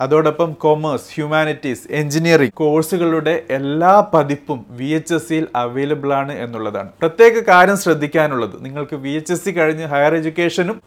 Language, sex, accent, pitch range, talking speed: Malayalam, male, native, 140-170 Hz, 140 wpm